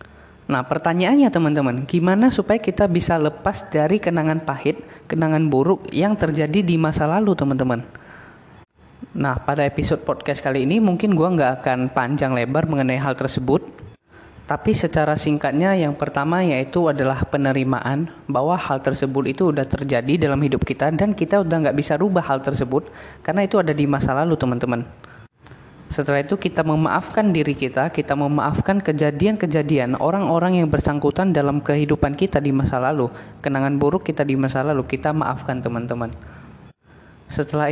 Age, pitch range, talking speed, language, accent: 20-39, 135-175 Hz, 150 wpm, Indonesian, native